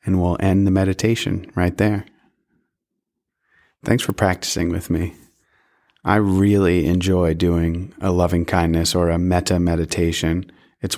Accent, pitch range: American, 85-100 Hz